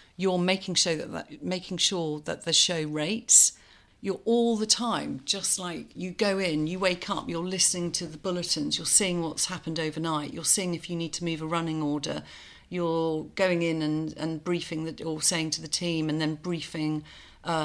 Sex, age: female, 40-59